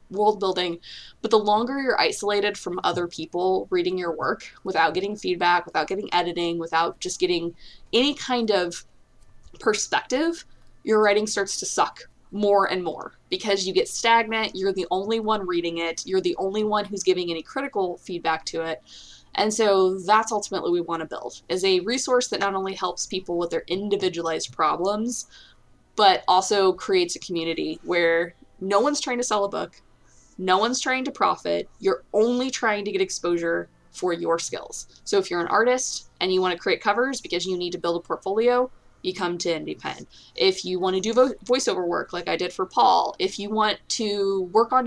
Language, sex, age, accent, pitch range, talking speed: English, female, 20-39, American, 175-225 Hz, 190 wpm